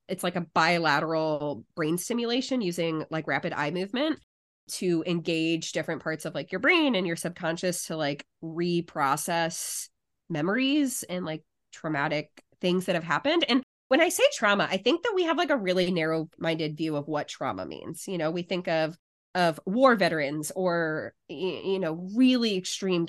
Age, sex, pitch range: 20-39, female, 160-205 Hz